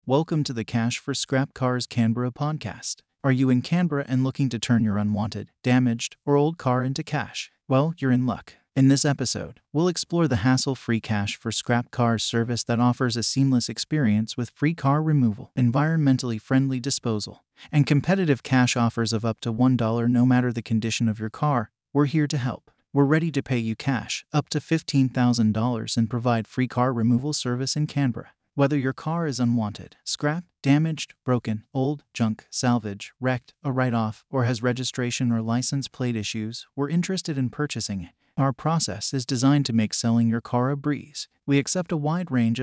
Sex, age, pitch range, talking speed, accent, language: male, 30-49, 115-140 Hz, 185 wpm, American, English